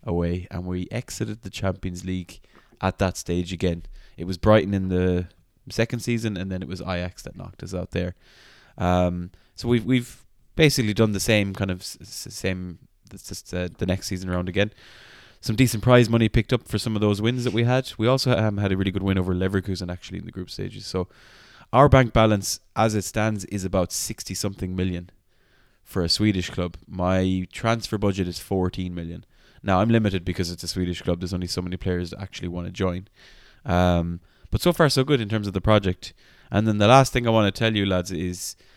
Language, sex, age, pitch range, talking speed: English, male, 20-39, 90-110 Hz, 215 wpm